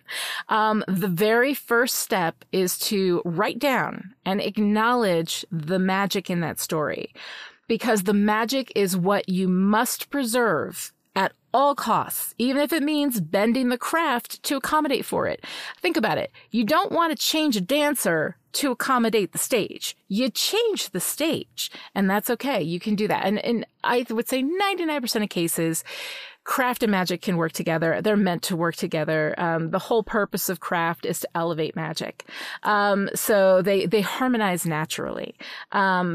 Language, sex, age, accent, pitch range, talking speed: English, female, 30-49, American, 180-245 Hz, 170 wpm